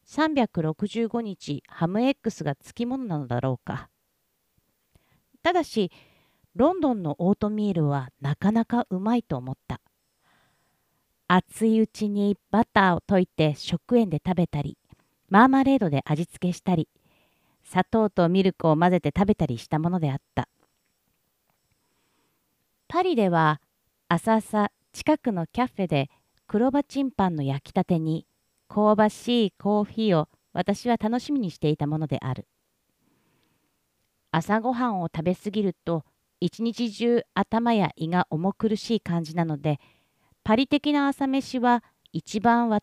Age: 50-69